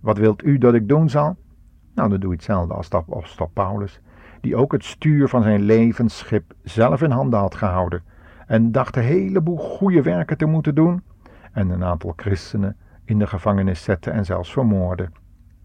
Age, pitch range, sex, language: 50-69, 90-125 Hz, male, Dutch